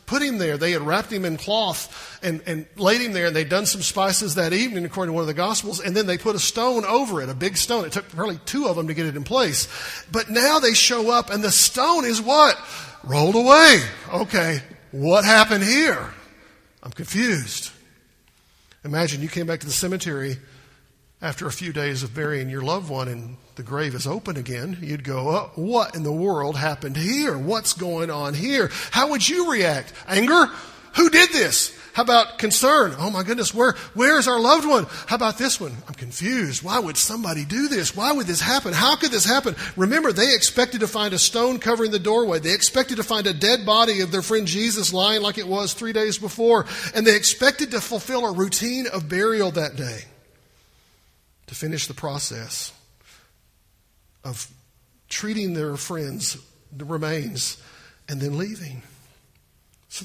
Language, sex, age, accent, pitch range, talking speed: English, male, 50-69, American, 145-225 Hz, 195 wpm